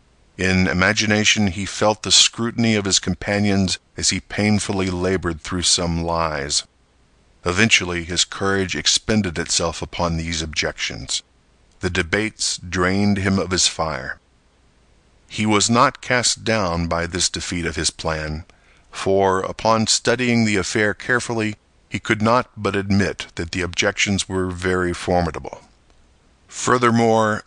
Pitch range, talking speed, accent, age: 85-110 Hz, 130 wpm, American, 50-69